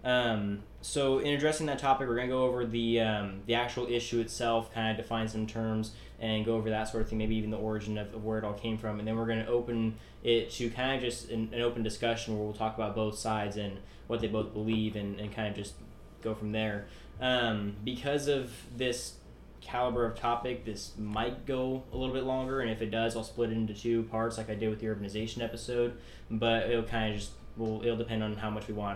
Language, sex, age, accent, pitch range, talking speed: English, male, 10-29, American, 105-120 Hz, 245 wpm